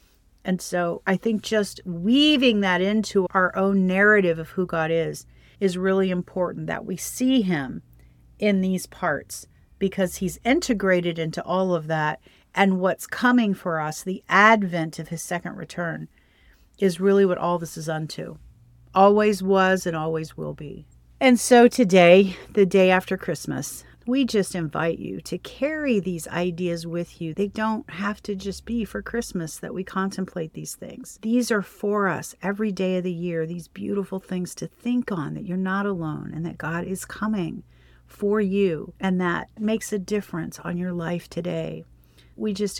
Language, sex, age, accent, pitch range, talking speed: English, female, 40-59, American, 165-200 Hz, 170 wpm